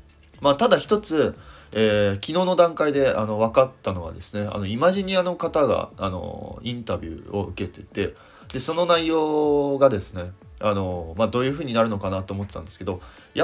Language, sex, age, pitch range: Japanese, male, 30-49, 95-135 Hz